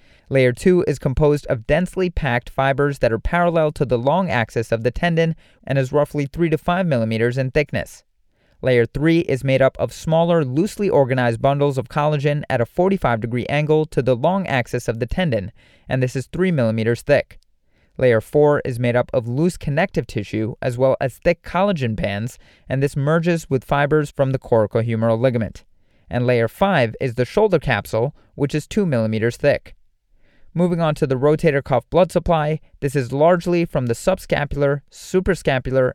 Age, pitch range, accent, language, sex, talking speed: 30-49, 120-160 Hz, American, English, male, 180 wpm